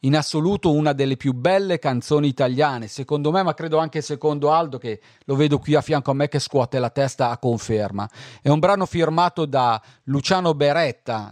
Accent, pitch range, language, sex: native, 125-160 Hz, Italian, male